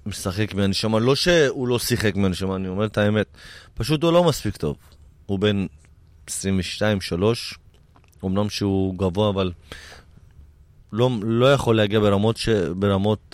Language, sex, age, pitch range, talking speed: Hebrew, male, 20-39, 90-115 Hz, 135 wpm